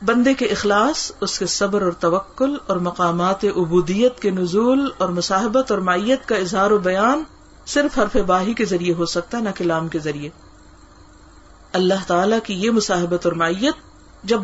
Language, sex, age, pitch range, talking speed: Urdu, female, 50-69, 175-245 Hz, 165 wpm